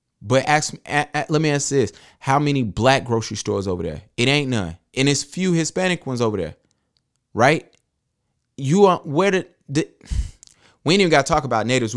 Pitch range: 105-135 Hz